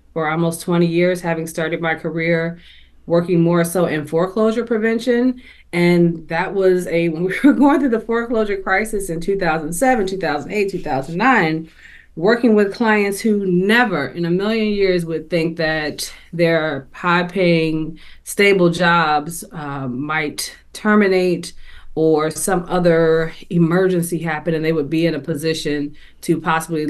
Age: 30-49